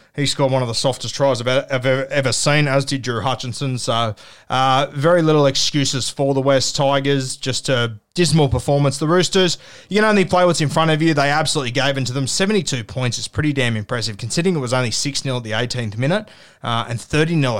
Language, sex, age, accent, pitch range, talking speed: English, male, 20-39, Australian, 125-160 Hz, 210 wpm